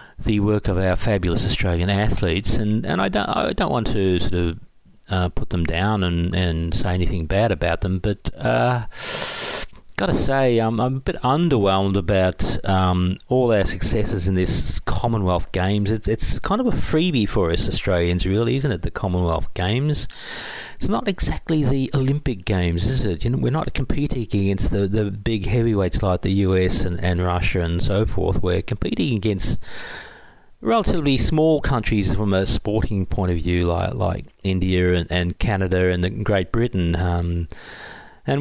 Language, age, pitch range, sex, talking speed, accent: English, 40-59, 90-115 Hz, male, 175 wpm, Australian